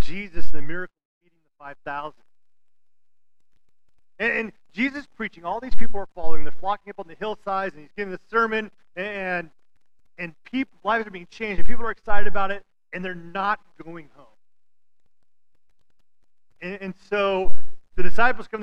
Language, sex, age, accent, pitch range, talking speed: English, male, 40-59, American, 165-220 Hz, 170 wpm